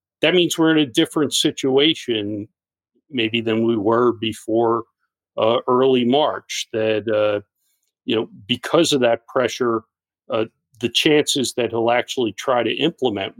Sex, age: male, 50-69